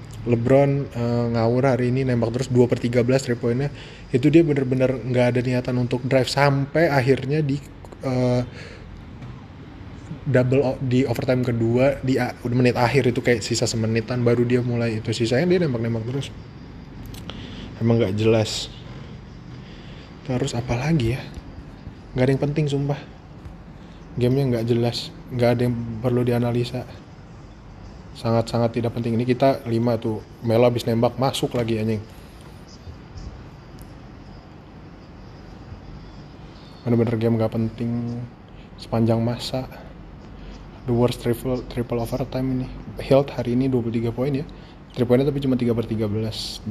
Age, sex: 20-39, male